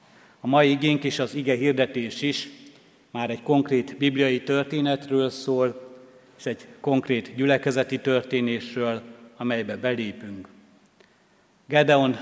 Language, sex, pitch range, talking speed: Hungarian, male, 125-140 Hz, 110 wpm